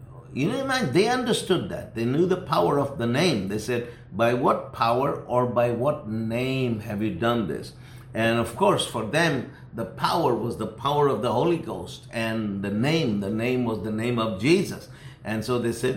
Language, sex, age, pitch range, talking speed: English, male, 60-79, 110-130 Hz, 200 wpm